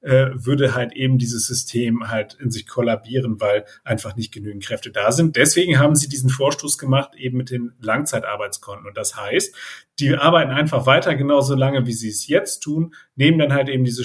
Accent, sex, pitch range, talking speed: German, male, 115-140 Hz, 190 wpm